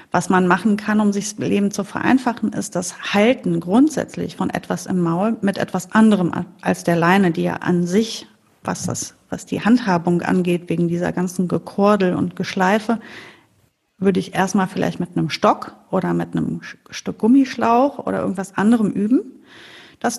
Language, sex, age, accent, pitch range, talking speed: German, female, 40-59, German, 185-230 Hz, 170 wpm